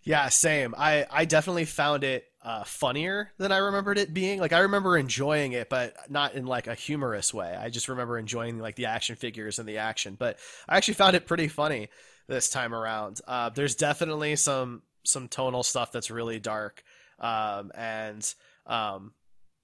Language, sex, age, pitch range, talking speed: English, male, 20-39, 120-155 Hz, 185 wpm